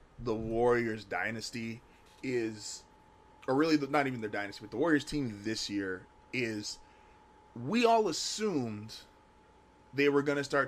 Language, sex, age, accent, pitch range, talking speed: English, male, 20-39, American, 115-175 Hz, 145 wpm